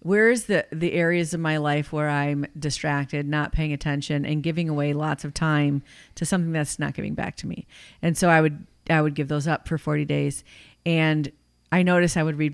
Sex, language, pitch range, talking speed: female, English, 145-170 Hz, 215 wpm